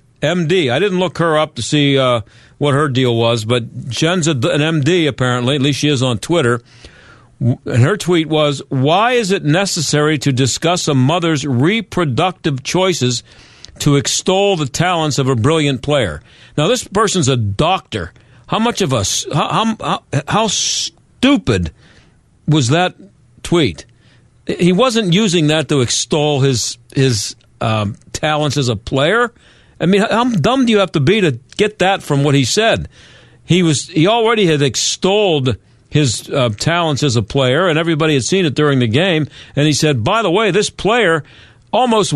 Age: 50-69